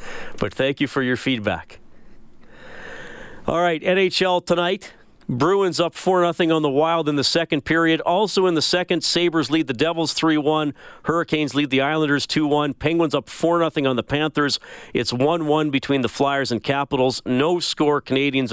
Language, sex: English, male